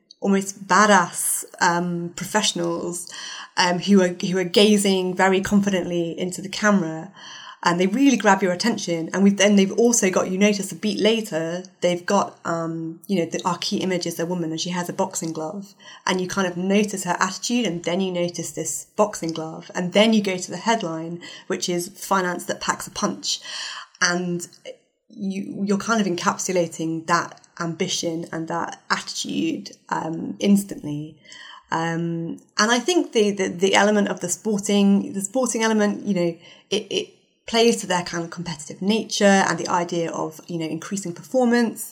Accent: British